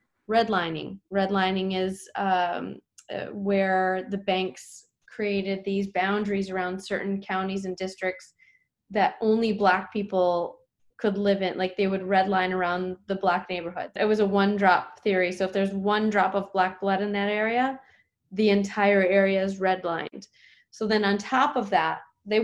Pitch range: 185-210 Hz